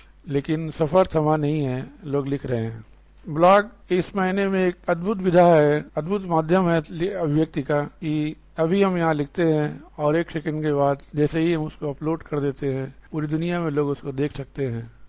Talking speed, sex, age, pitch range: 190 wpm, male, 50-69, 150-180 Hz